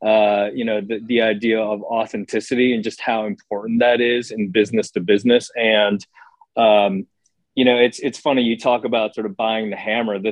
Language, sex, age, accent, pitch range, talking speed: English, male, 30-49, American, 100-115 Hz, 200 wpm